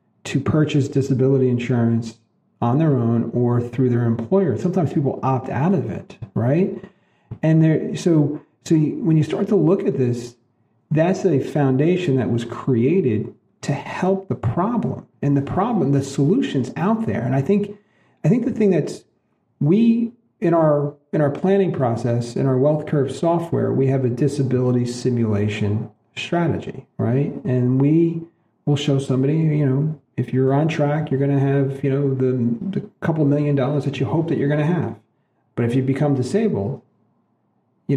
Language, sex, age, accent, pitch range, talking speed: English, male, 40-59, American, 125-160 Hz, 170 wpm